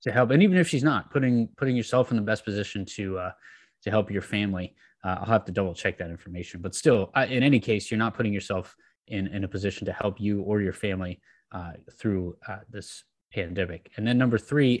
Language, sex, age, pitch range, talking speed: English, male, 20-39, 95-120 Hz, 230 wpm